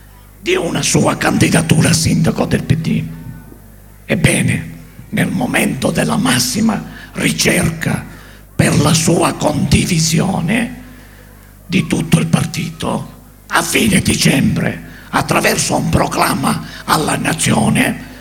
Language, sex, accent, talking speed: English, male, Italian, 100 wpm